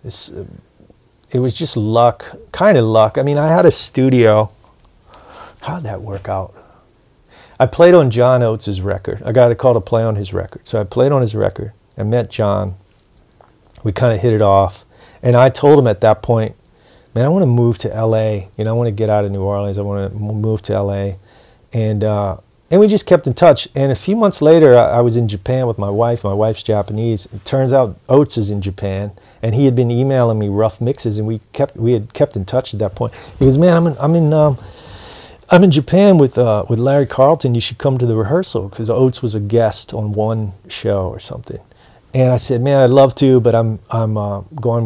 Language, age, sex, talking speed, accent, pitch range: English, 40-59, male, 230 wpm, American, 105-130 Hz